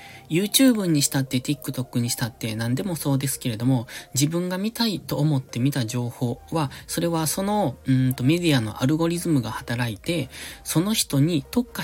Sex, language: male, Japanese